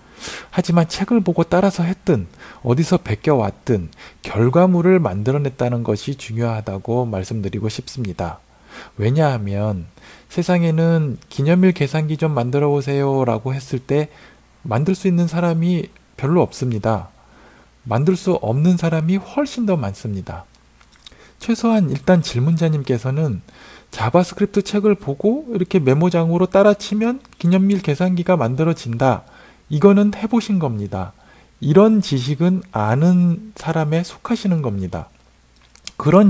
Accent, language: native, Korean